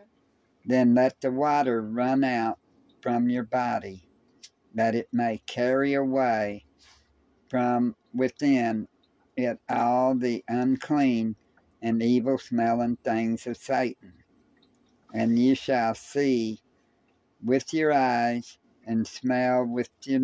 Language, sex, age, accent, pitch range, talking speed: English, male, 60-79, American, 115-135 Hz, 110 wpm